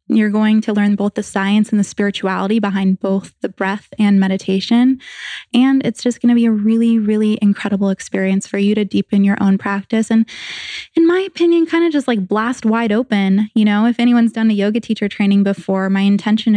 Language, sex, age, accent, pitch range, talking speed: English, female, 20-39, American, 195-220 Hz, 205 wpm